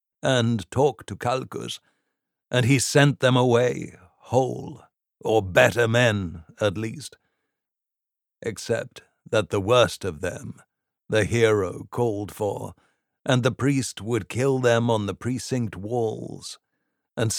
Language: English